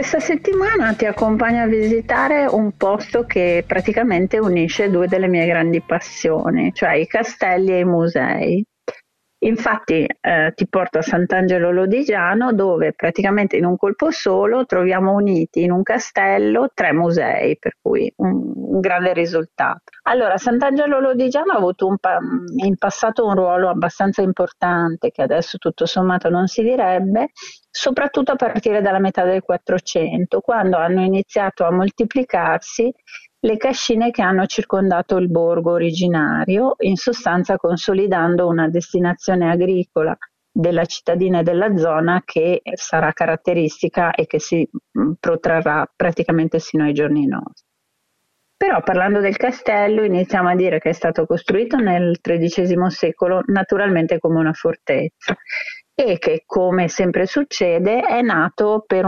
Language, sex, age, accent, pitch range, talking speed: Italian, female, 40-59, native, 170-220 Hz, 140 wpm